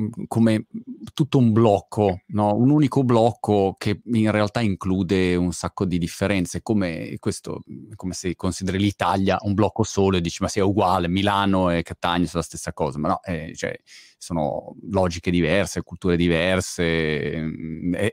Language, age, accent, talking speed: Italian, 30-49, native, 160 wpm